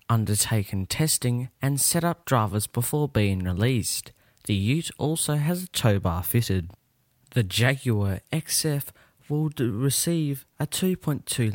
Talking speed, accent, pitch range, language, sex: 125 wpm, Australian, 105-130 Hz, English, male